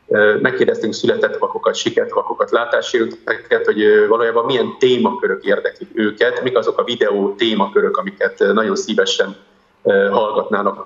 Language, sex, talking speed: Hungarian, male, 115 wpm